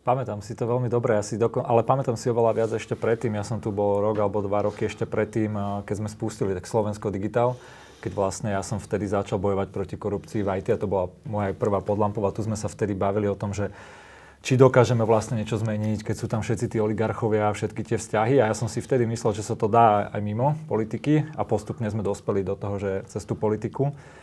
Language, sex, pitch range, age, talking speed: Slovak, male, 105-115 Hz, 30-49, 230 wpm